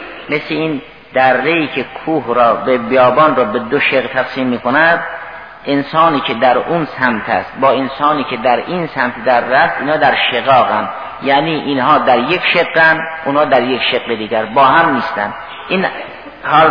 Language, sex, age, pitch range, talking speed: Persian, male, 50-69, 125-165 Hz, 175 wpm